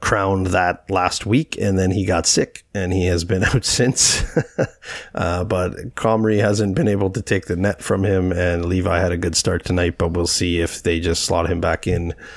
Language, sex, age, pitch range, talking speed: English, male, 30-49, 85-100 Hz, 215 wpm